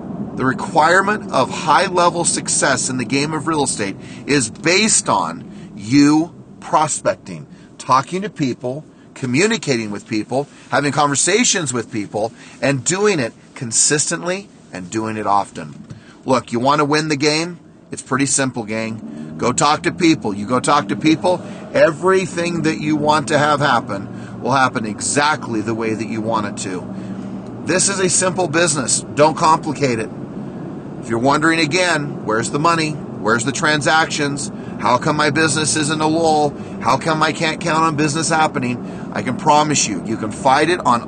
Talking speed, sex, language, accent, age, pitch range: 165 wpm, male, English, American, 40-59, 130-165 Hz